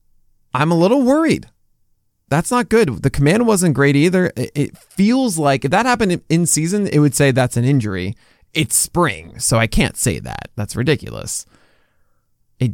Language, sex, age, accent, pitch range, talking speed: English, male, 20-39, American, 115-150 Hz, 170 wpm